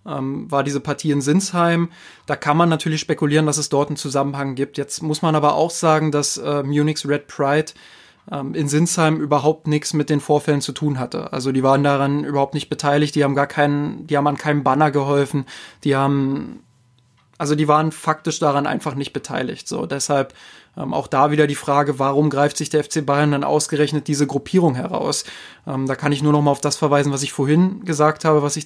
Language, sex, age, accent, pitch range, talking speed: German, male, 20-39, German, 140-155 Hz, 205 wpm